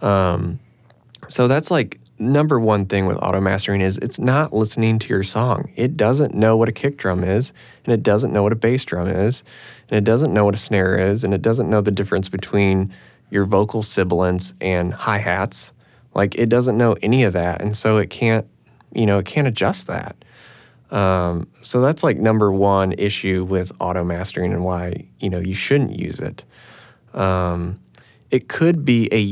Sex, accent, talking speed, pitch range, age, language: male, American, 190 wpm, 95-120 Hz, 20-39, English